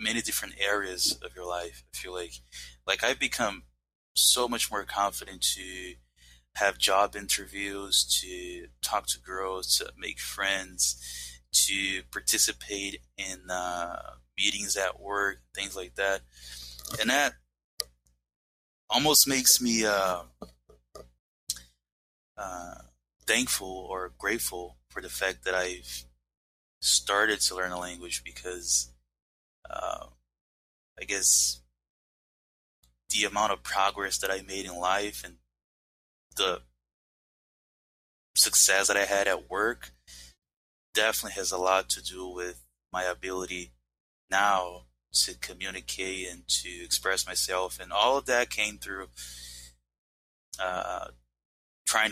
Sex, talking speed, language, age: male, 115 wpm, English, 20-39